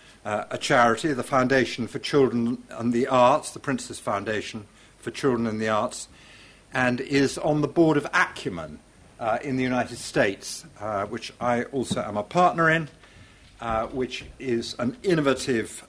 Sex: male